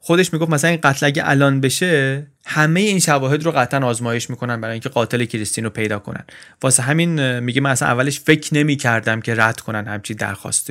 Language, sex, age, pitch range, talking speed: Persian, male, 30-49, 120-160 Hz, 200 wpm